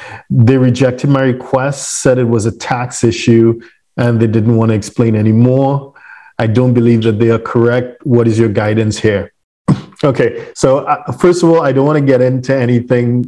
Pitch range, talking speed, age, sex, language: 115-135 Hz, 195 wpm, 40-59, male, English